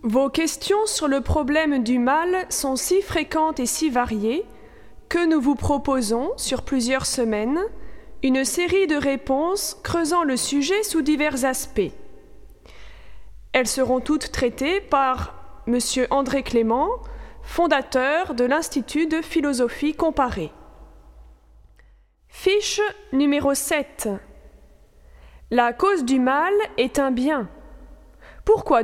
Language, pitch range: French, 250-370 Hz